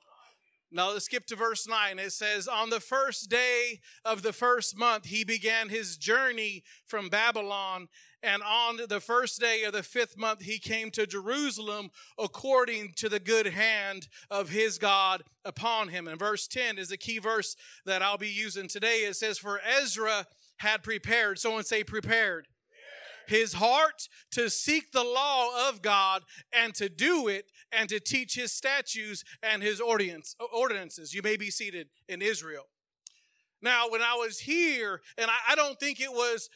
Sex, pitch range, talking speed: male, 210-245 Hz, 170 wpm